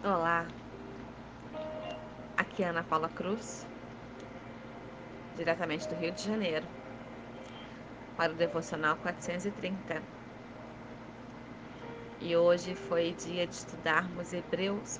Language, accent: Portuguese, Brazilian